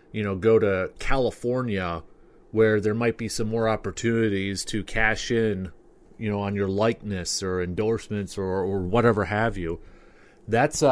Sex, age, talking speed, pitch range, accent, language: male, 30-49, 155 wpm, 105-125 Hz, American, English